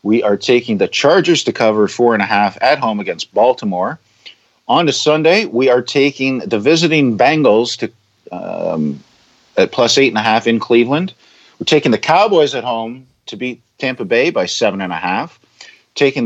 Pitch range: 105-140 Hz